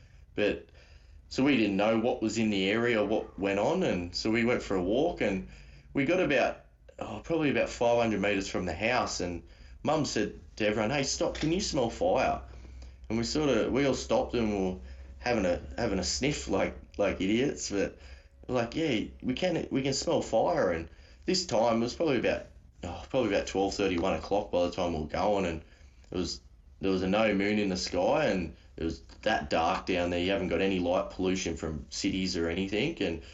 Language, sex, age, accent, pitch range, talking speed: English, male, 20-39, Australian, 75-105 Hz, 210 wpm